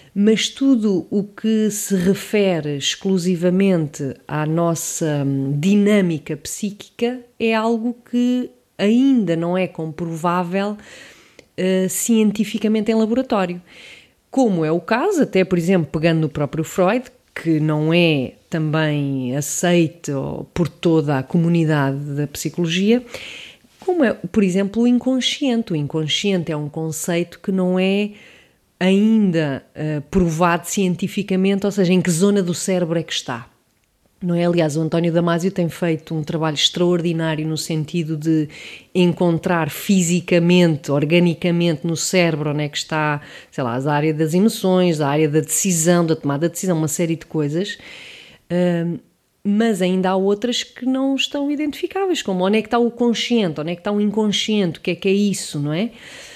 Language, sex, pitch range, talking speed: English, female, 160-205 Hz, 145 wpm